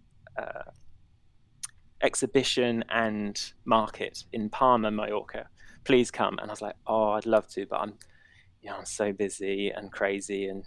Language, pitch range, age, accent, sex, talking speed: English, 105-135 Hz, 20-39, British, male, 150 wpm